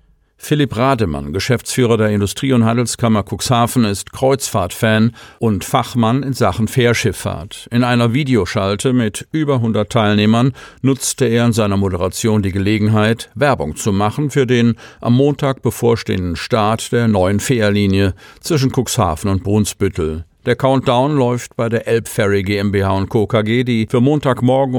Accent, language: German, German